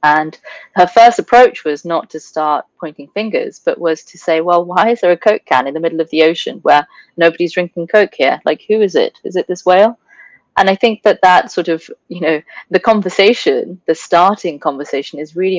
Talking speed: 215 wpm